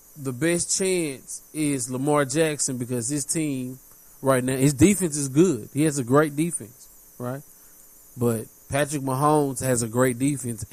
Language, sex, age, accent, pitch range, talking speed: English, male, 20-39, American, 130-195 Hz, 155 wpm